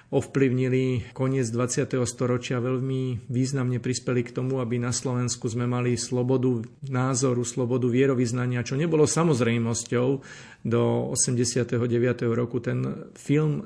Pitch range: 125-135 Hz